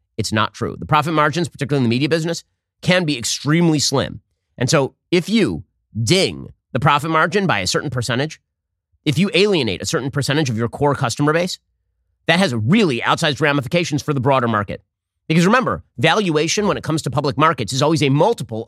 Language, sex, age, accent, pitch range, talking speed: English, male, 30-49, American, 115-165 Hz, 195 wpm